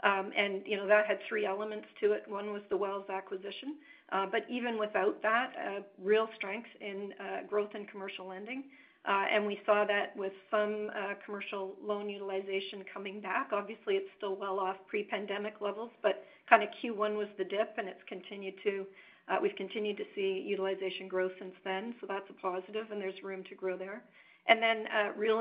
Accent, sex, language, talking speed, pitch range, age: American, female, English, 195 wpm, 200-220 Hz, 50-69